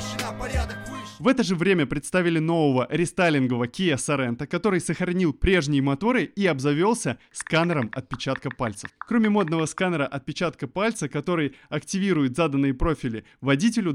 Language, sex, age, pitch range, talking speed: Russian, male, 20-39, 140-180 Hz, 120 wpm